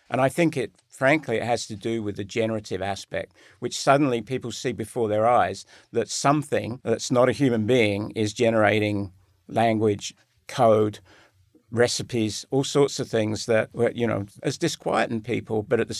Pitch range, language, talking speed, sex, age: 105-125 Hz, English, 170 wpm, male, 50-69